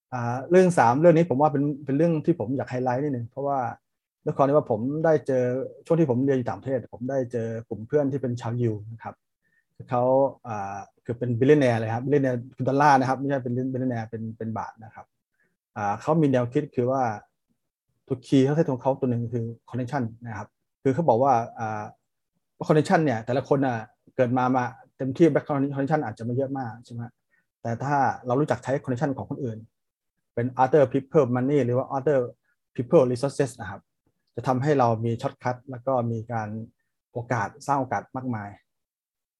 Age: 30-49